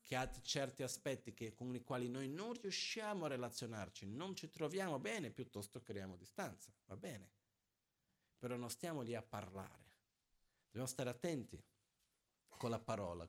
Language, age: Italian, 50-69